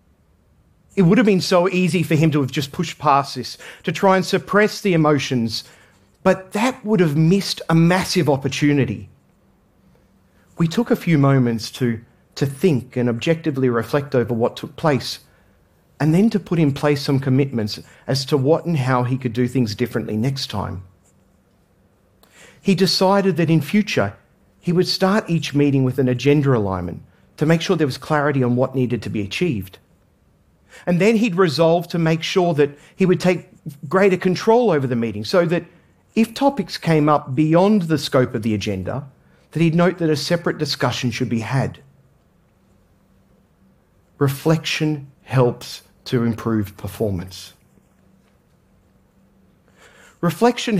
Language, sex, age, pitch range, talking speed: Arabic, male, 40-59, 120-180 Hz, 155 wpm